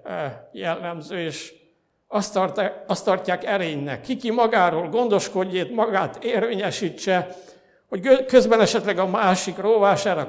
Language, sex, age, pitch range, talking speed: Hungarian, male, 60-79, 180-215 Hz, 100 wpm